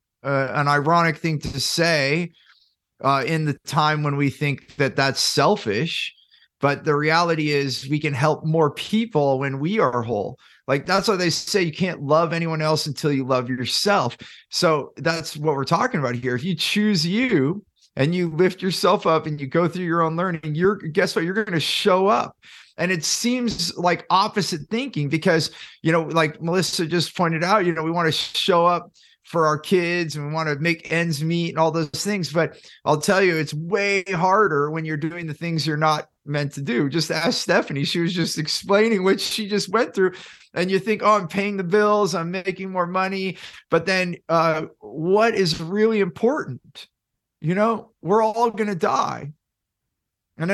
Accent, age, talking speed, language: American, 30-49, 195 wpm, English